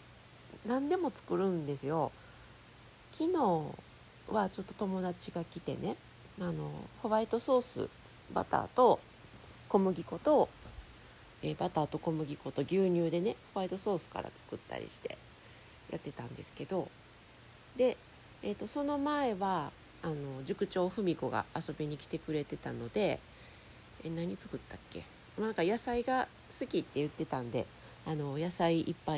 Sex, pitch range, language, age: female, 140-210 Hz, Japanese, 40-59